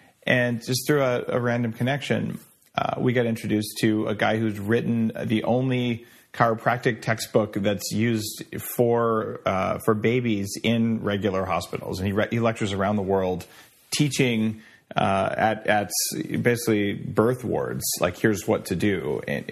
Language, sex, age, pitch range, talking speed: English, male, 30-49, 110-130 Hz, 160 wpm